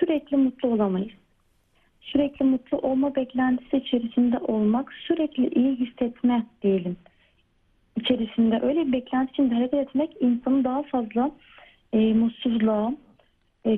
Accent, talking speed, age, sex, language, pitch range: native, 115 wpm, 40-59, female, Turkish, 225-270 Hz